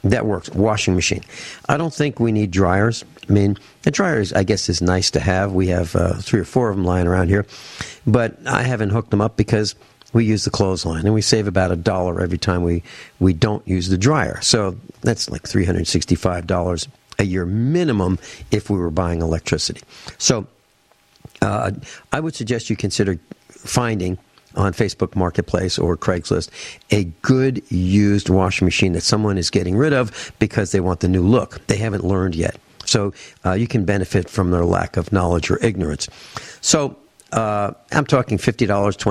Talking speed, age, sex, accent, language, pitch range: 180 wpm, 60-79, male, American, English, 90-110 Hz